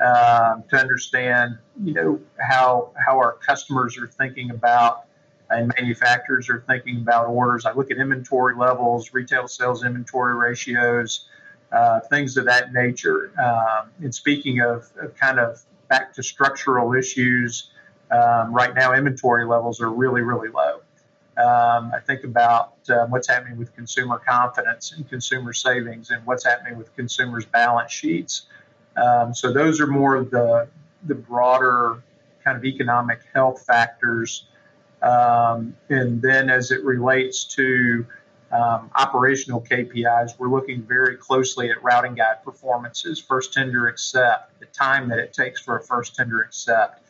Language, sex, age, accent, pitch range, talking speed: English, male, 50-69, American, 120-130 Hz, 150 wpm